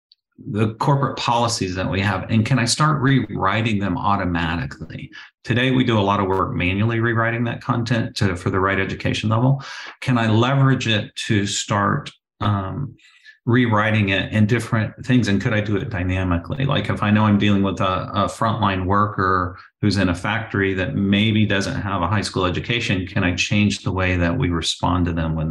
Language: English